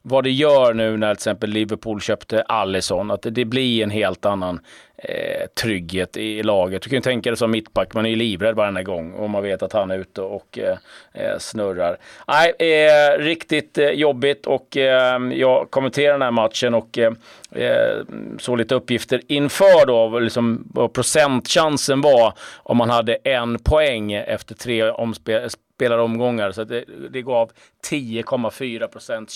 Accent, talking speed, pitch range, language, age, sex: native, 165 wpm, 110-145 Hz, Swedish, 30-49, male